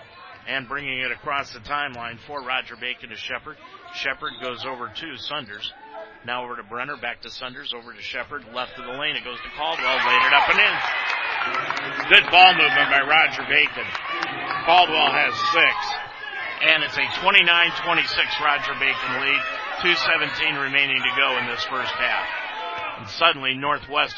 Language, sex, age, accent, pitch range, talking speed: English, male, 50-69, American, 125-165 Hz, 165 wpm